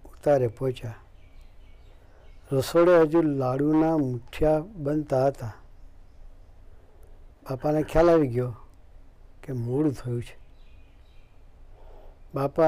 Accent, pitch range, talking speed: native, 85-145 Hz, 80 wpm